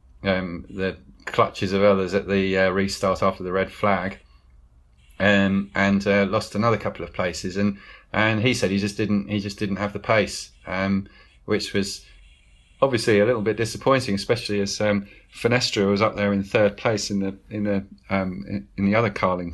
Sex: male